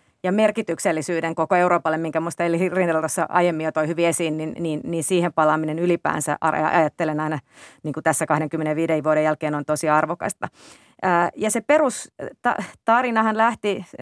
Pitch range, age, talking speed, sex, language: 175-200 Hz, 30-49, 140 wpm, female, Finnish